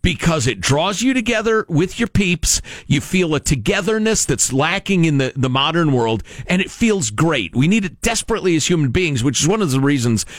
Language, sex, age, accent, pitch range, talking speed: English, male, 50-69, American, 115-180 Hz, 210 wpm